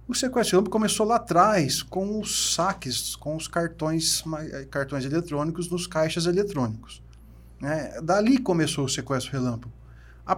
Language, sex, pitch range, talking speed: Portuguese, male, 135-190 Hz, 140 wpm